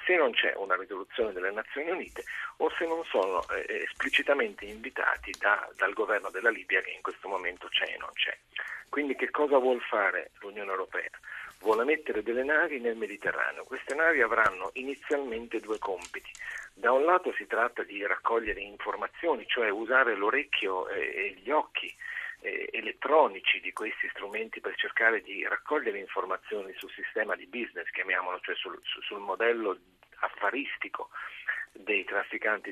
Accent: native